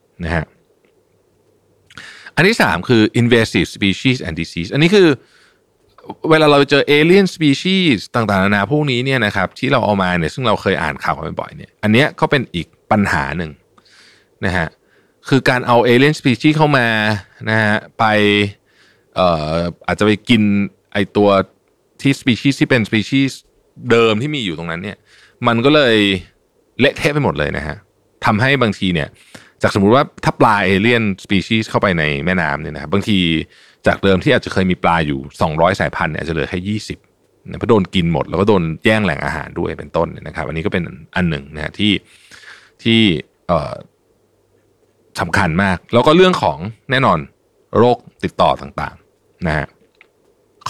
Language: Thai